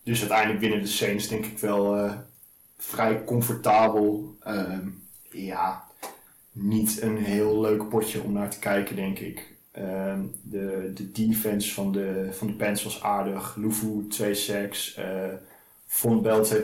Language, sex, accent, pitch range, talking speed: Dutch, male, Dutch, 100-110 Hz, 150 wpm